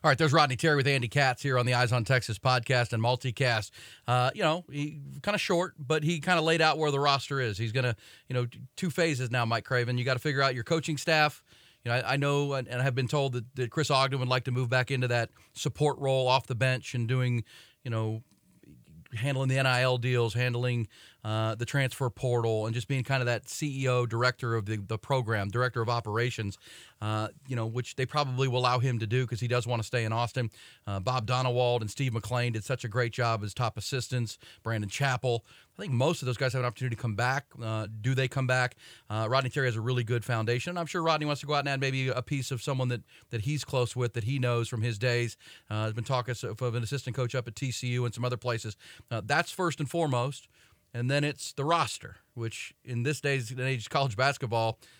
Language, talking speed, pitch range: English, 240 wpm, 120-135 Hz